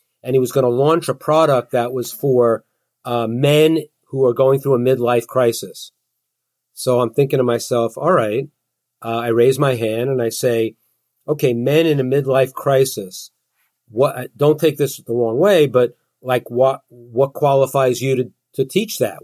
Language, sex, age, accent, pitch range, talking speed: English, male, 40-59, American, 115-145 Hz, 180 wpm